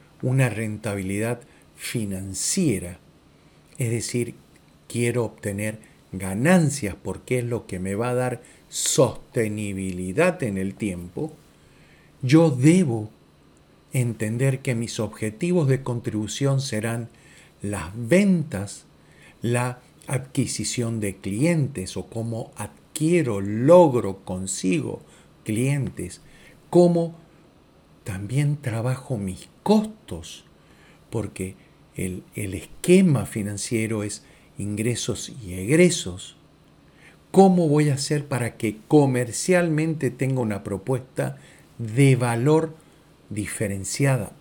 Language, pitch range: Spanish, 105-150 Hz